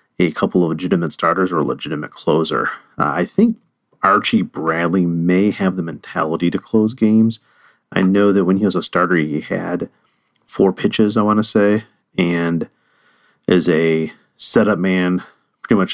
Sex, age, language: male, 40-59, English